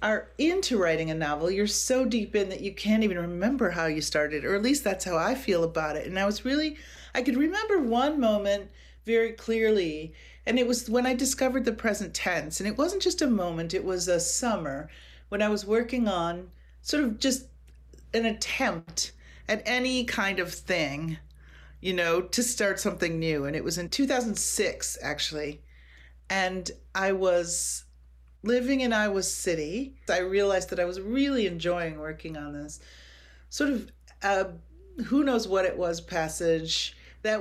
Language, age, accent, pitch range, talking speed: English, 40-59, American, 165-225 Hz, 175 wpm